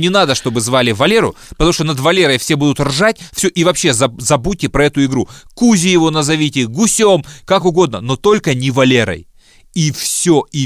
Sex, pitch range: male, 110-155 Hz